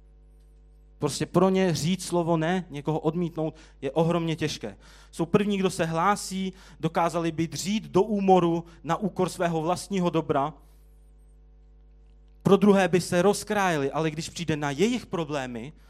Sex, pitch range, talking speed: male, 130-180 Hz, 140 wpm